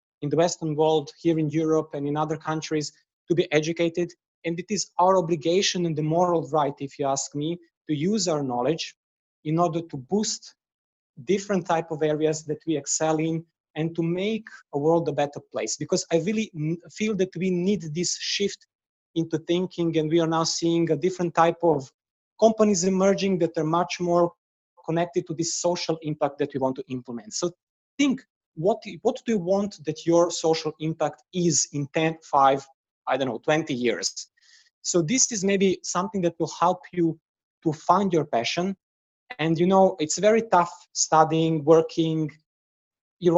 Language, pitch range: English, 155-175 Hz